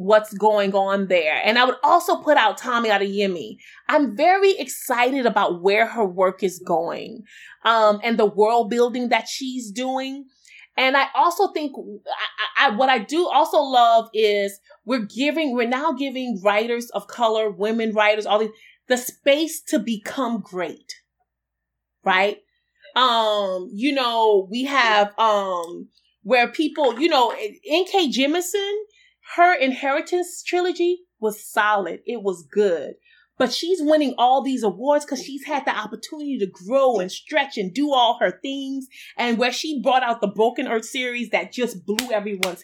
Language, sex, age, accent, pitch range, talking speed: English, female, 30-49, American, 210-295 Hz, 160 wpm